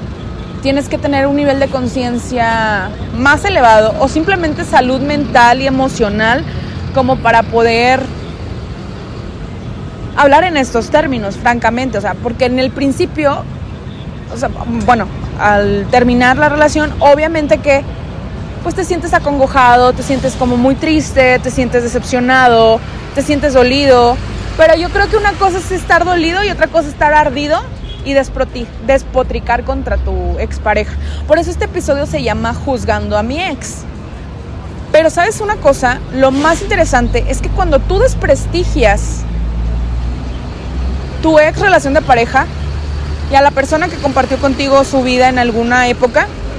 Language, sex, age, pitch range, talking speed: Spanish, female, 20-39, 235-300 Hz, 145 wpm